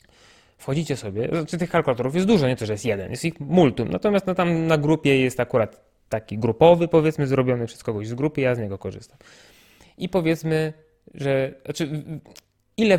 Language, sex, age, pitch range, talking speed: Polish, male, 20-39, 120-160 Hz, 180 wpm